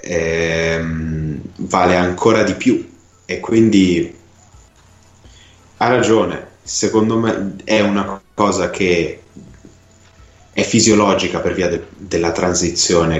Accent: native